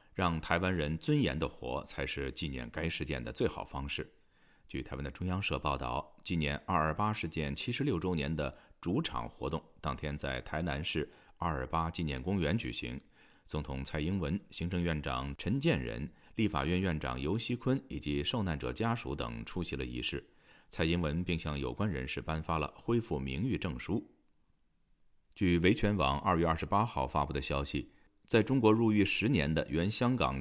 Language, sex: Chinese, male